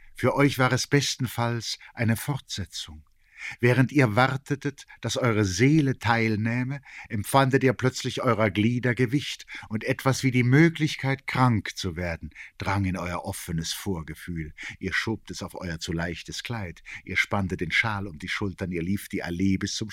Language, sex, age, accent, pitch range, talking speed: German, male, 50-69, German, 95-125 Hz, 165 wpm